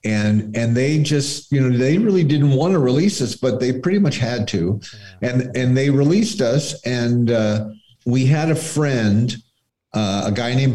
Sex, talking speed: male, 190 wpm